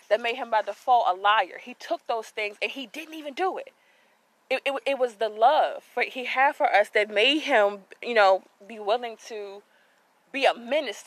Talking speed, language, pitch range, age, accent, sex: 210 wpm, English, 205-270 Hz, 20-39, American, female